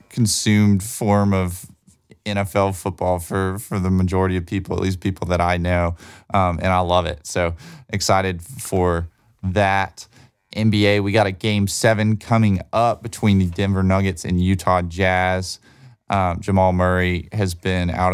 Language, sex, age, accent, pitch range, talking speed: English, male, 20-39, American, 90-105 Hz, 155 wpm